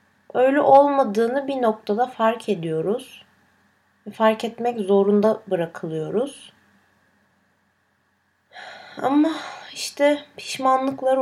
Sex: female